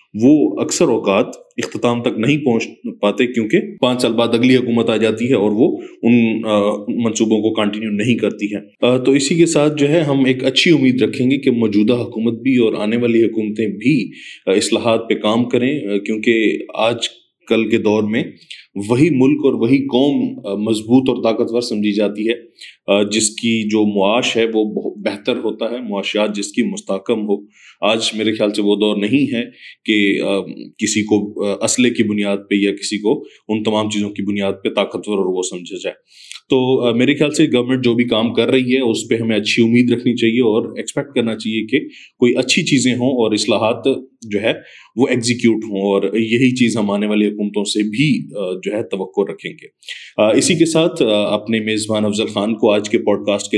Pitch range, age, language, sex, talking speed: 105-125 Hz, 20-39, Urdu, male, 195 wpm